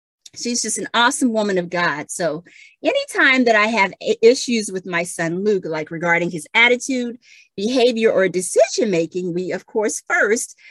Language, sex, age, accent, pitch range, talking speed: English, female, 40-59, American, 180-255 Hz, 160 wpm